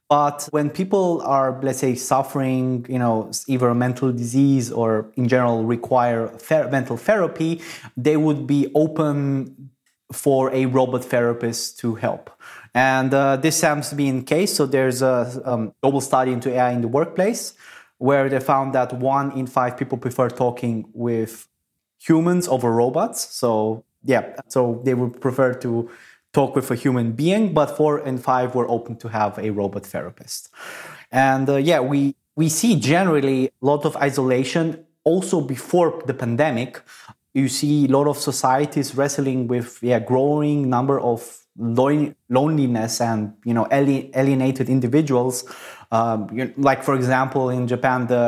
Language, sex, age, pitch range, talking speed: English, male, 20-39, 120-140 Hz, 155 wpm